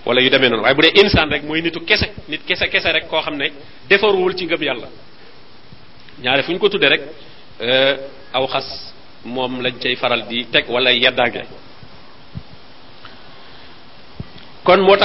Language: French